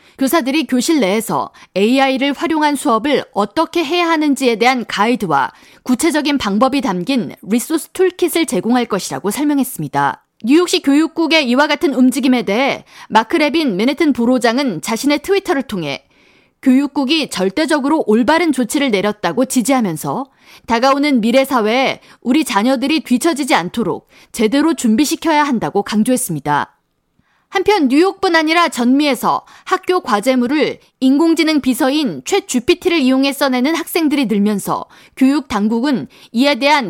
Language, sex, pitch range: Korean, female, 235-315 Hz